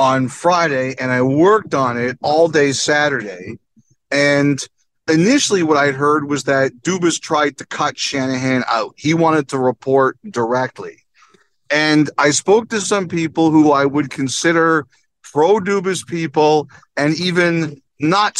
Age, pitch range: 40-59, 135-170 Hz